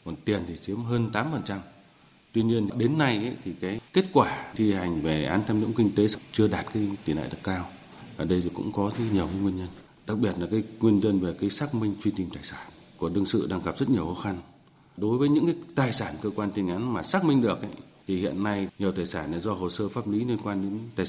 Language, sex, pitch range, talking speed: Vietnamese, male, 90-115 Hz, 265 wpm